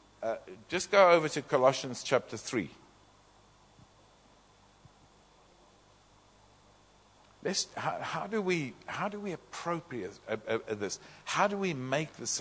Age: 60-79